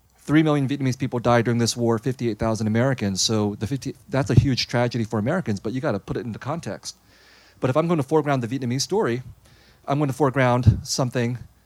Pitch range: 110-140 Hz